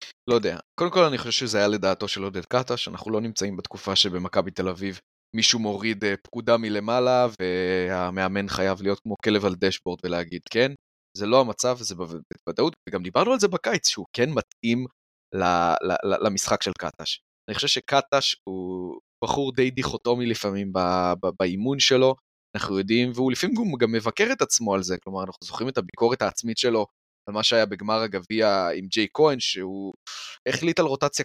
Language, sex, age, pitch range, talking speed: Hebrew, male, 20-39, 95-120 Hz, 175 wpm